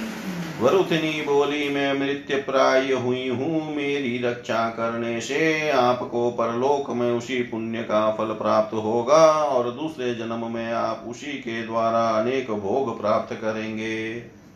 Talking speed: 130 wpm